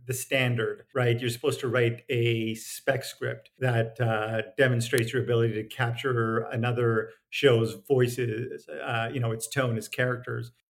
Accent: American